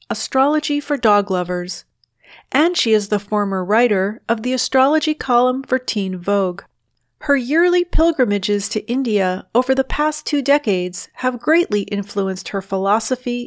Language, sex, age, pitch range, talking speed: English, female, 40-59, 200-280 Hz, 145 wpm